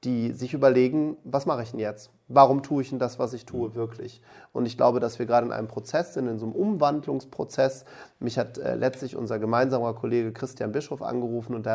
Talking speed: 220 wpm